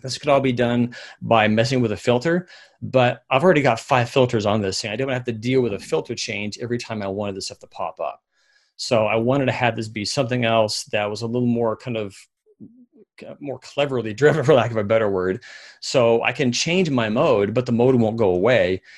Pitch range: 105-125 Hz